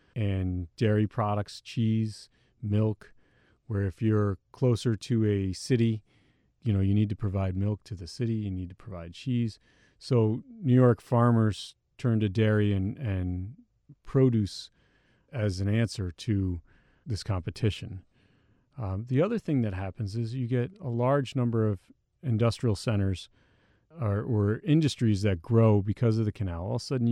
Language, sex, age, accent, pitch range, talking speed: English, male, 40-59, American, 100-120 Hz, 155 wpm